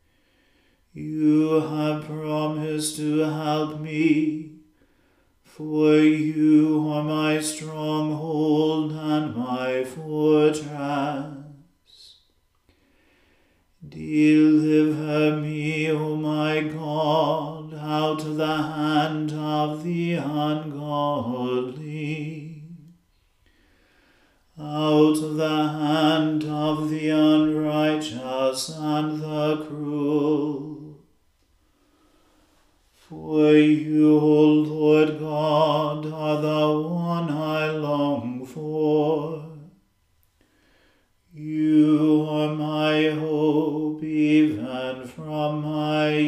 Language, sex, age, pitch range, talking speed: English, male, 40-59, 150-155 Hz, 70 wpm